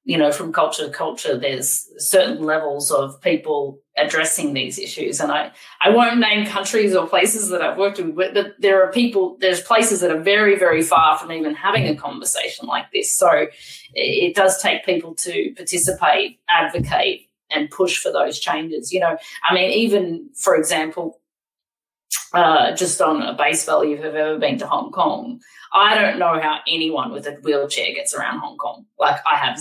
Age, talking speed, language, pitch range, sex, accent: 30-49, 185 wpm, English, 160-240 Hz, female, Australian